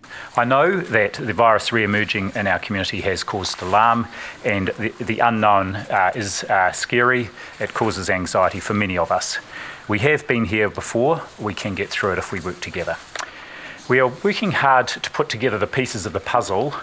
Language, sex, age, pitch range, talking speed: Finnish, male, 40-59, 90-110 Hz, 190 wpm